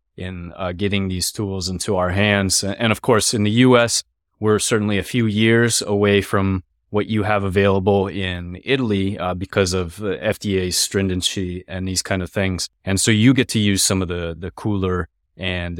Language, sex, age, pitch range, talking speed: English, male, 20-39, 90-105 Hz, 190 wpm